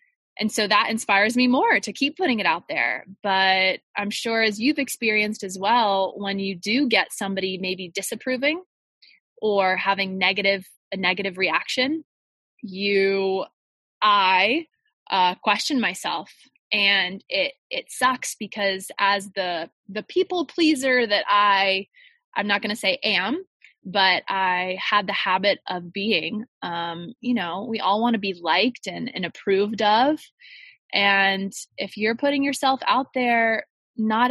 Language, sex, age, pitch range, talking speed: English, female, 20-39, 190-240 Hz, 145 wpm